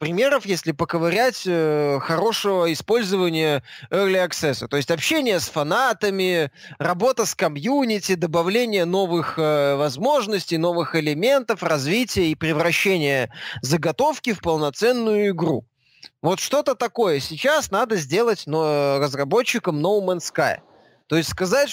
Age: 20-39